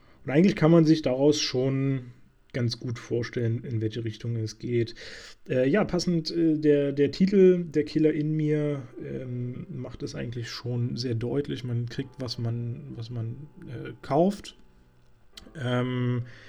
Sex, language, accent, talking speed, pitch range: male, German, German, 150 wpm, 120-165 Hz